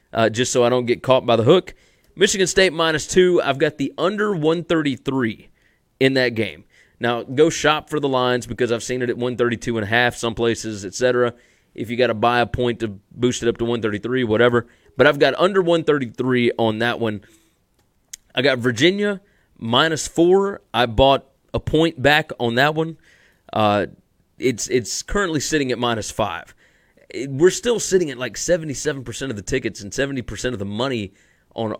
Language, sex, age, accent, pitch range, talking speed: English, male, 30-49, American, 115-155 Hz, 185 wpm